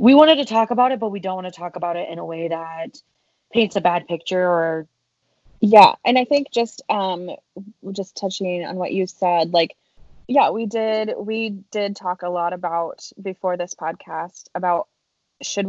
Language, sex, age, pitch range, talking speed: English, female, 20-39, 175-205 Hz, 190 wpm